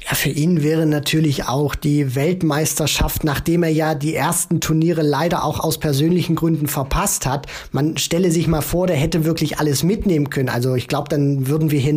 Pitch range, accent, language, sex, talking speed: 150-180 Hz, German, German, male, 195 wpm